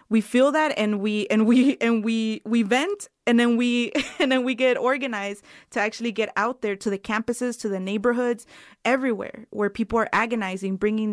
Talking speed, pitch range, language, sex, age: 195 wpm, 210-260 Hz, English, female, 20-39